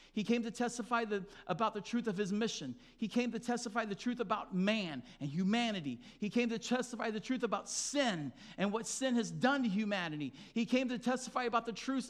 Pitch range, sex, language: 145-235 Hz, male, English